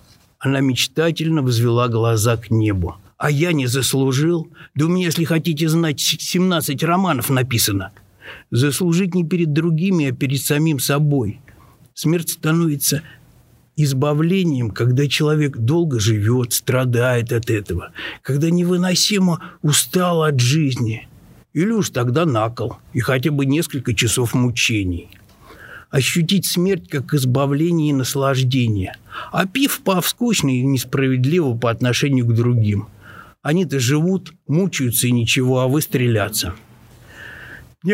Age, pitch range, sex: 60-79, 115-160 Hz, male